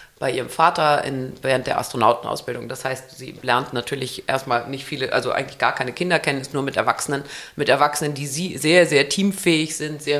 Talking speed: 190 wpm